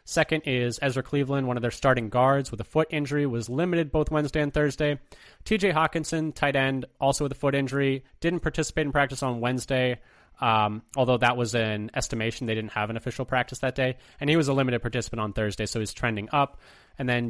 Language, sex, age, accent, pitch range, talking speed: English, male, 20-39, American, 120-150 Hz, 215 wpm